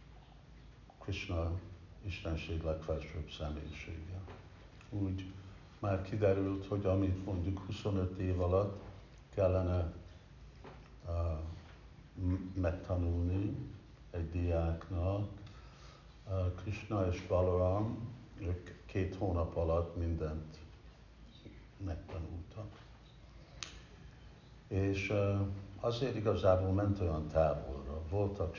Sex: male